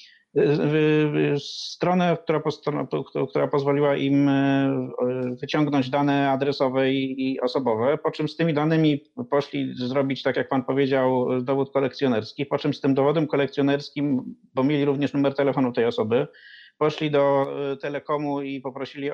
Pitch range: 135-155 Hz